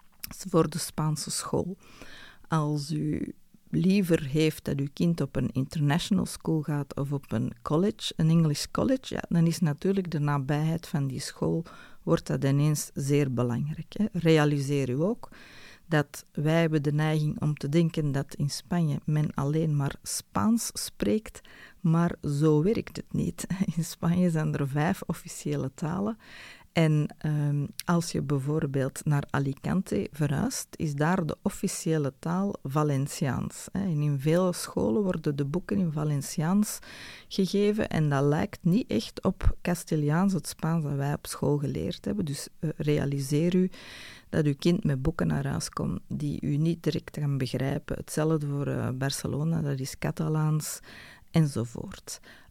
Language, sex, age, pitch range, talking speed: Dutch, female, 40-59, 145-175 Hz, 150 wpm